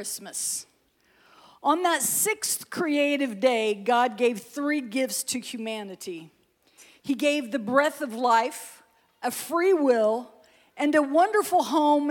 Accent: American